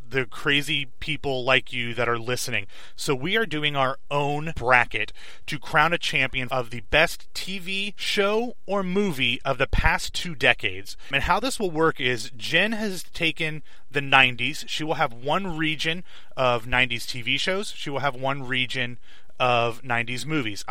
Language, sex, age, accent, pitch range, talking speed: English, male, 30-49, American, 125-160 Hz, 170 wpm